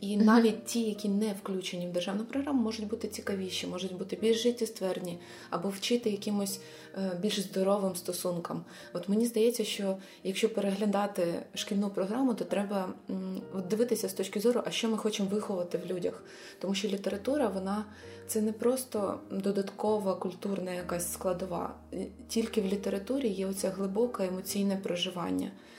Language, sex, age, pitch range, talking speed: Ukrainian, female, 20-39, 185-215 Hz, 145 wpm